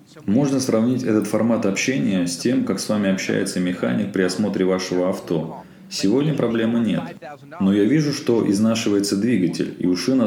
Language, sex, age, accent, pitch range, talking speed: Russian, male, 30-49, native, 95-115 Hz, 165 wpm